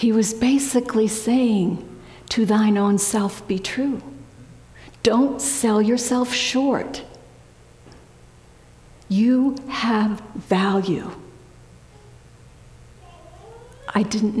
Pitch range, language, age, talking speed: 150-220 Hz, English, 50-69, 80 wpm